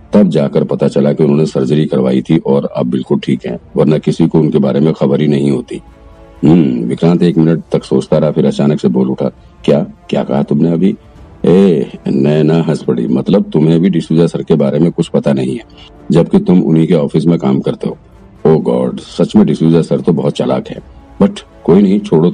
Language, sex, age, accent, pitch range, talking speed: Hindi, male, 50-69, native, 70-80 Hz, 205 wpm